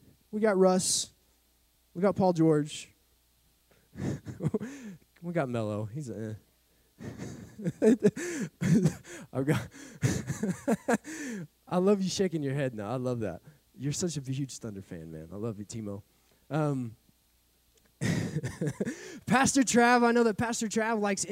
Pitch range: 110-175 Hz